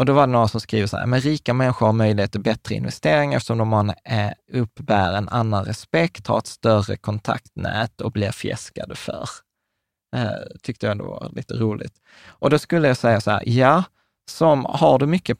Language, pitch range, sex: Swedish, 110-135 Hz, male